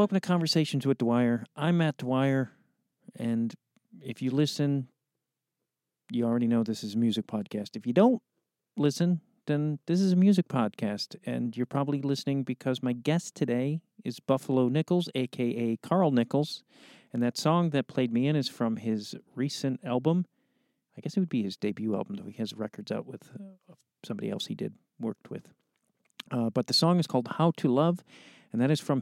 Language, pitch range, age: English, 115-165 Hz, 40-59